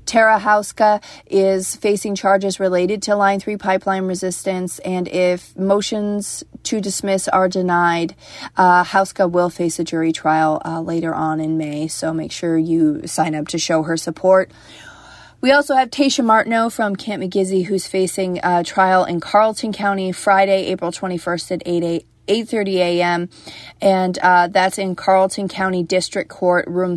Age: 30-49